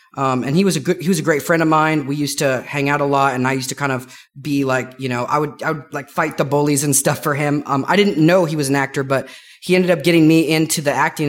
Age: 30-49